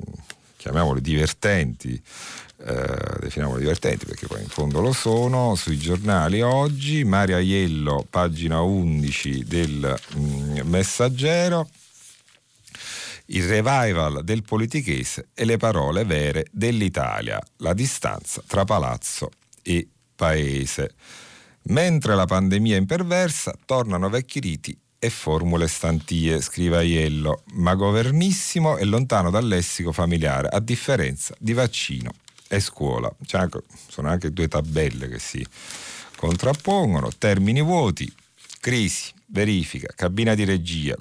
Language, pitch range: Italian, 75-115 Hz